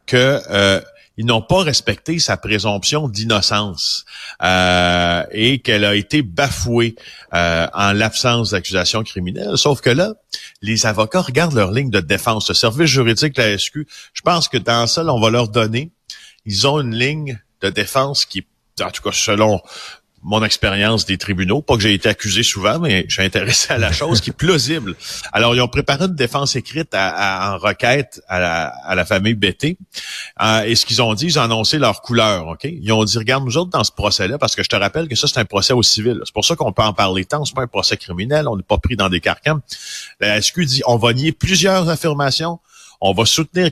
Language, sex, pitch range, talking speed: French, male, 105-145 Hz, 210 wpm